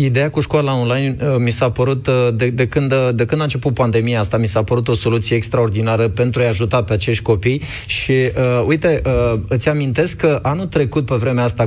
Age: 20-39